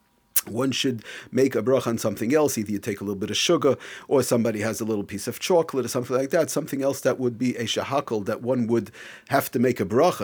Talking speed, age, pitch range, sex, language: 250 wpm, 40-59, 100-130 Hz, male, English